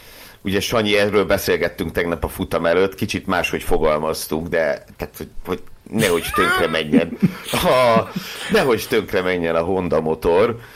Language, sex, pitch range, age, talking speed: Hungarian, male, 80-110 Hz, 60-79, 140 wpm